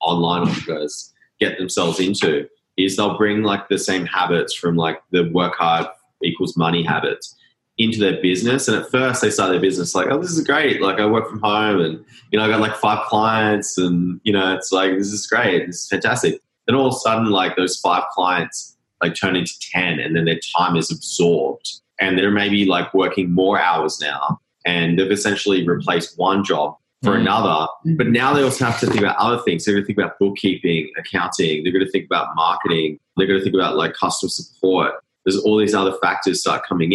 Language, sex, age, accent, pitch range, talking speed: English, male, 20-39, Australian, 90-110 Hz, 215 wpm